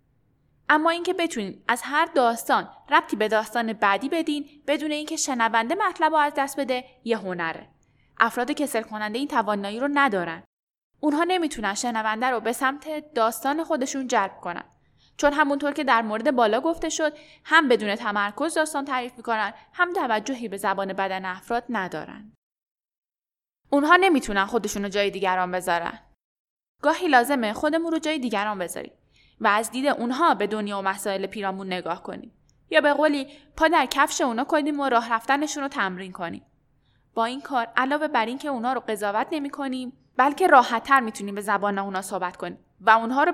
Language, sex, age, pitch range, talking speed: Persian, female, 10-29, 205-290 Hz, 170 wpm